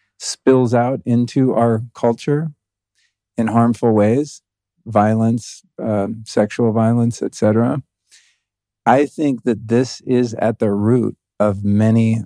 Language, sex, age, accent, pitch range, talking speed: English, male, 40-59, American, 100-115 Hz, 115 wpm